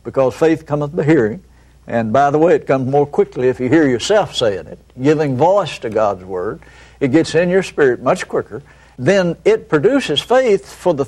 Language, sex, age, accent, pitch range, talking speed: English, male, 60-79, American, 135-185 Hz, 200 wpm